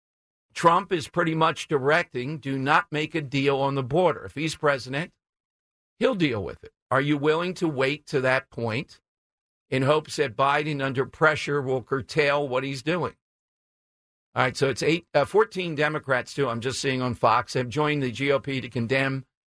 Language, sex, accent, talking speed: English, male, American, 180 wpm